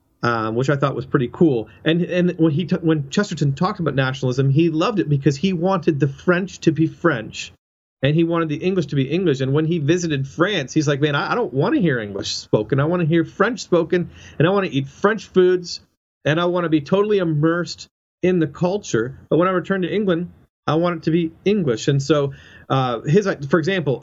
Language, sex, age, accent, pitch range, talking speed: English, male, 40-59, American, 135-175 Hz, 225 wpm